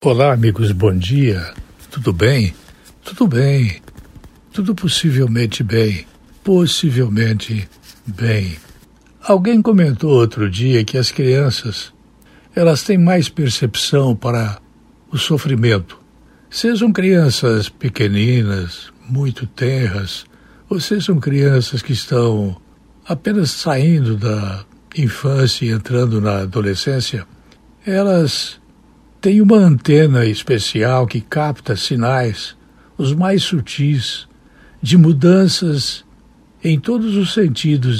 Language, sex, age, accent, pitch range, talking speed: Portuguese, male, 60-79, Brazilian, 110-155 Hz, 100 wpm